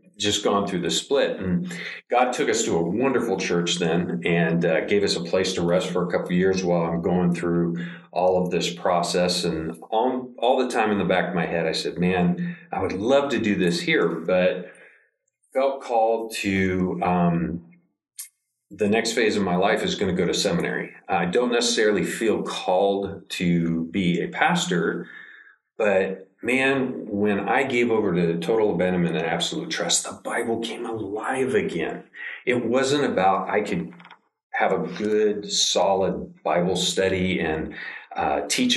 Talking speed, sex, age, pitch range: 175 wpm, male, 40-59, 90-120 Hz